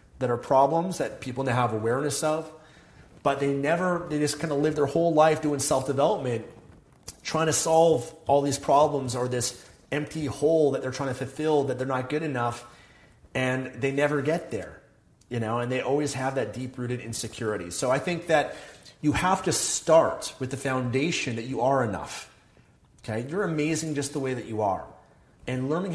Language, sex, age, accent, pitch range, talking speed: English, male, 30-49, American, 125-145 Hz, 190 wpm